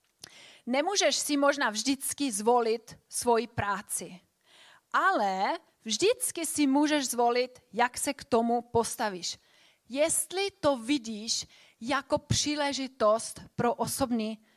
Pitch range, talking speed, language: 220-285 Hz, 100 wpm, Czech